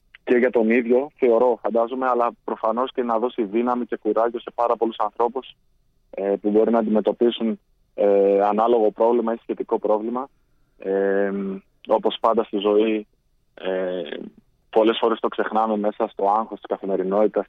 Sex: male